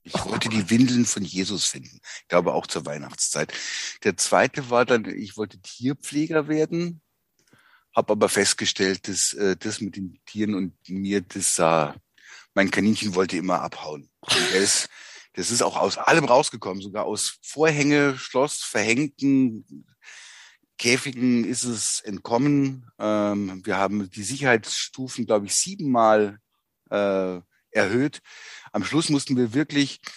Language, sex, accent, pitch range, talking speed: German, male, German, 100-135 Hz, 140 wpm